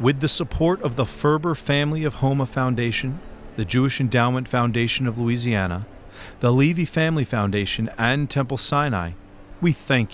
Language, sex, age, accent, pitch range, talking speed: English, male, 40-59, American, 100-140 Hz, 150 wpm